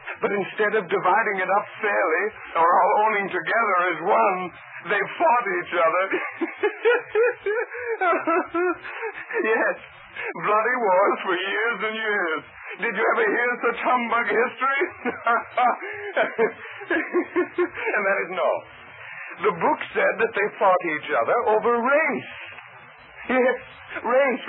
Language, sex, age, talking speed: English, male, 50-69, 115 wpm